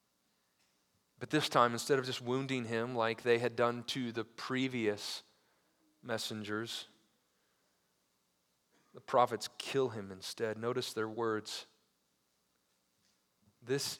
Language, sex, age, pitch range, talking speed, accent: English, male, 40-59, 95-130 Hz, 105 wpm, American